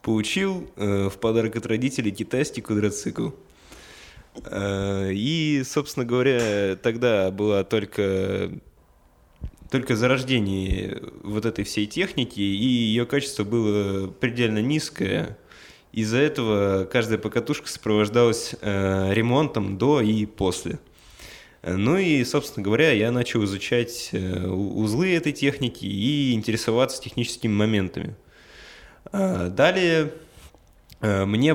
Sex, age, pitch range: male, 20-39, 100-130 Hz